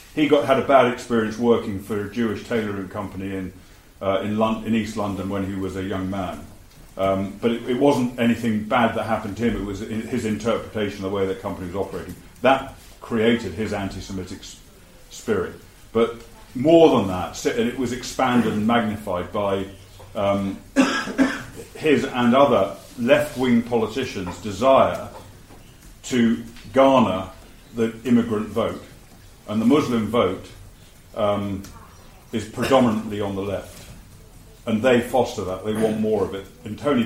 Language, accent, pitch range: English, British, 95-120 Hz